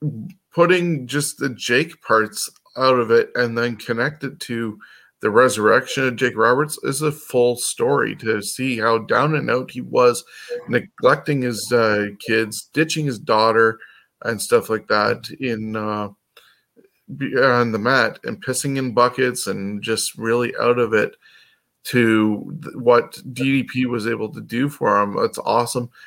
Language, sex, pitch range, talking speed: English, male, 115-145 Hz, 155 wpm